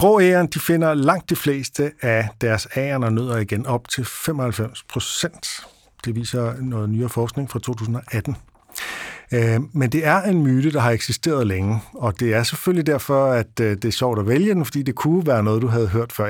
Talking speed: 200 wpm